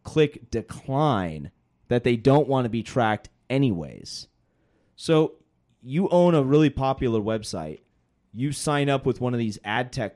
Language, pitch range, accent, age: English, 100-125 Hz, American, 30-49